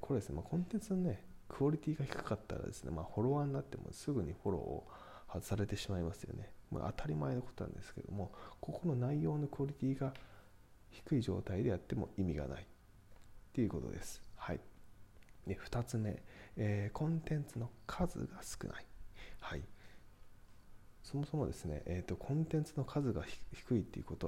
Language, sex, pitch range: Japanese, male, 85-125 Hz